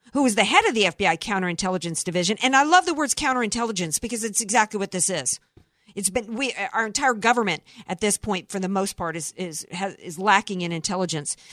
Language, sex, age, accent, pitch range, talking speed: English, female, 50-69, American, 195-280 Hz, 210 wpm